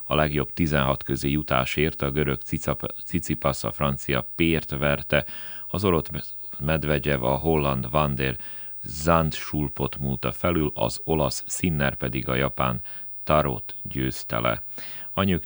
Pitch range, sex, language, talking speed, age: 65-75 Hz, male, Hungarian, 120 wpm, 40-59